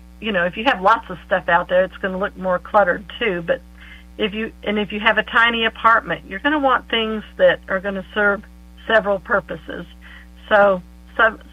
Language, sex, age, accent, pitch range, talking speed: English, female, 50-69, American, 180-210 Hz, 215 wpm